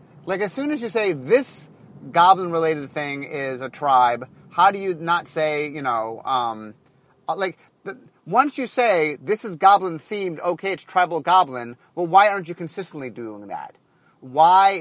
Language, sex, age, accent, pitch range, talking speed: English, male, 30-49, American, 150-195 Hz, 160 wpm